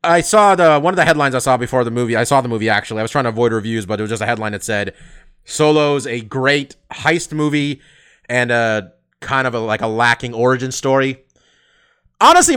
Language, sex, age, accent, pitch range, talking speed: English, male, 30-49, American, 125-165 Hz, 220 wpm